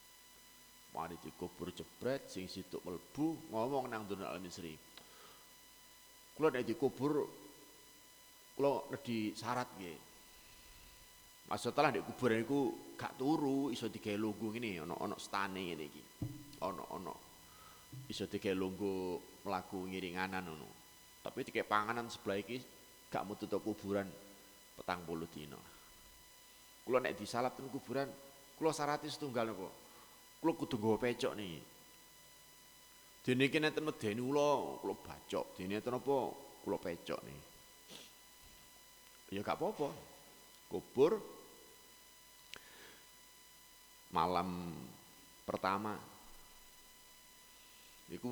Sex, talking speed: male, 105 wpm